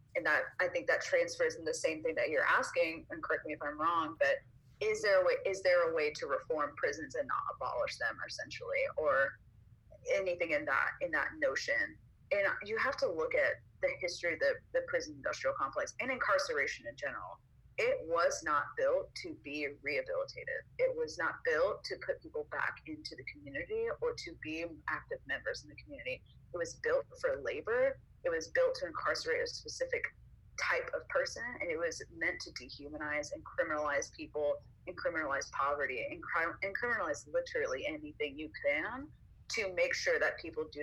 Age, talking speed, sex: 30-49, 185 wpm, female